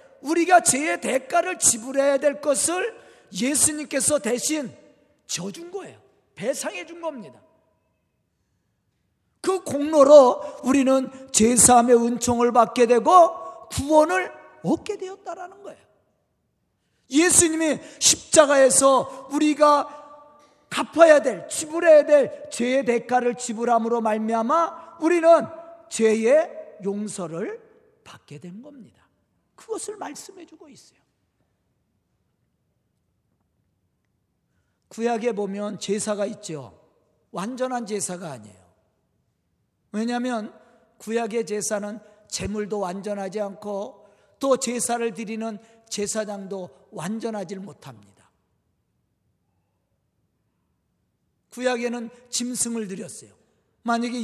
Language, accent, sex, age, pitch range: Korean, native, male, 40-59, 200-290 Hz